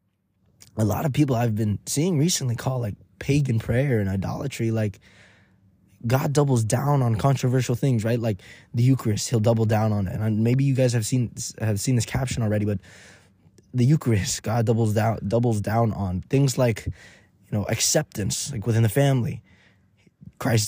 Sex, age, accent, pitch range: male, 20-39, American, 105-140 Hz